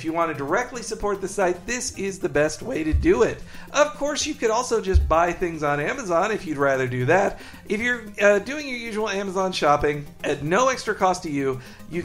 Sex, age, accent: male, 50-69, American